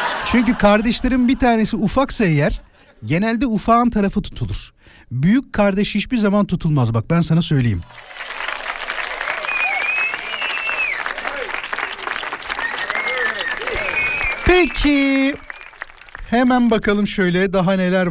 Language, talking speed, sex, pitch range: Turkish, 85 wpm, male, 155-220 Hz